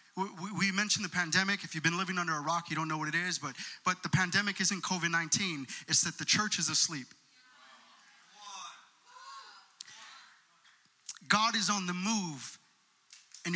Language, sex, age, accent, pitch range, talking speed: English, male, 30-49, American, 190-245 Hz, 155 wpm